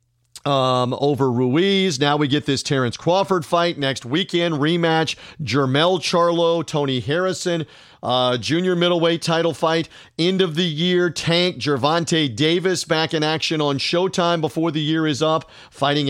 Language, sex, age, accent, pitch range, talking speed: English, male, 40-59, American, 130-160 Hz, 150 wpm